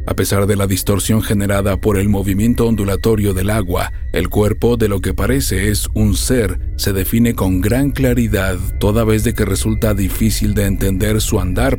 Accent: Mexican